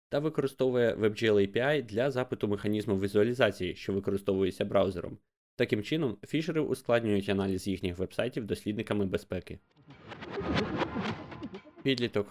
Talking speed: 100 wpm